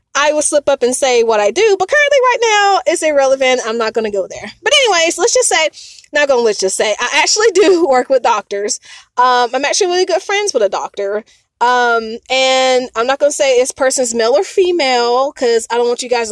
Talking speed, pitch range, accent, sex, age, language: 230 wpm, 245-340 Hz, American, female, 20-39, English